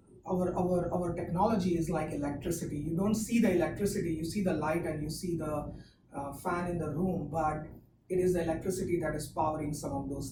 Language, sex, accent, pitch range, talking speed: English, female, Indian, 150-190 Hz, 210 wpm